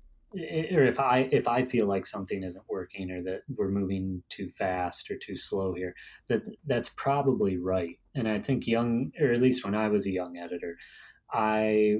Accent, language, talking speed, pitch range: American, English, 190 wpm, 95-125 Hz